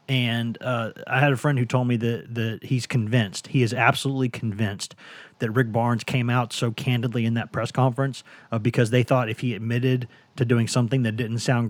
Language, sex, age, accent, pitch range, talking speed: English, male, 30-49, American, 115-145 Hz, 210 wpm